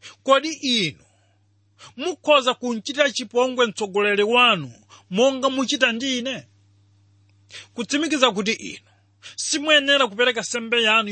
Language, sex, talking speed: English, male, 95 wpm